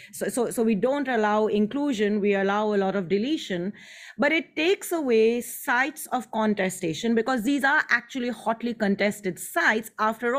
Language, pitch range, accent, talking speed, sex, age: English, 210-250 Hz, Indian, 160 wpm, female, 30-49